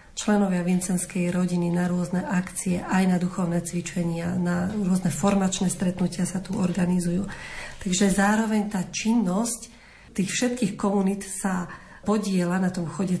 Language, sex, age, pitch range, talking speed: Slovak, female, 40-59, 175-195 Hz, 130 wpm